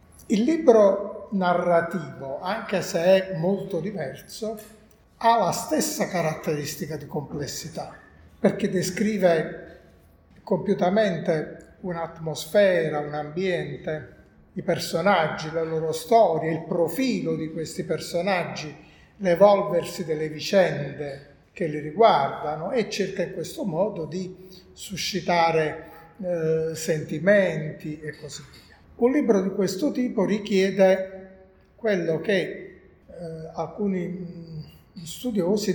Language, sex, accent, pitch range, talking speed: Italian, male, native, 160-200 Hz, 100 wpm